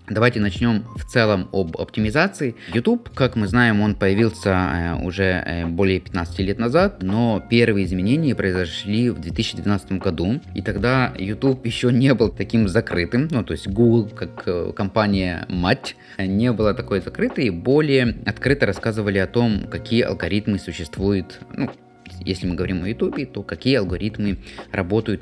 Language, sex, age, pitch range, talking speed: Russian, male, 20-39, 95-120 Hz, 145 wpm